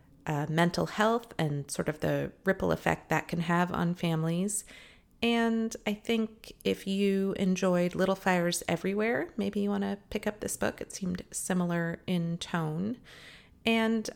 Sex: female